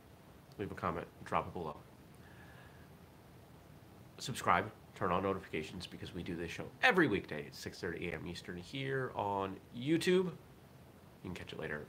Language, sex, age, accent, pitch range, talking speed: English, male, 30-49, American, 85-110 Hz, 150 wpm